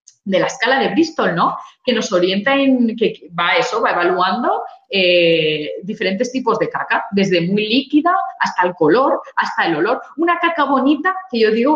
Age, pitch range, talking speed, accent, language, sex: 20-39, 185-260 Hz, 180 wpm, Spanish, Spanish, female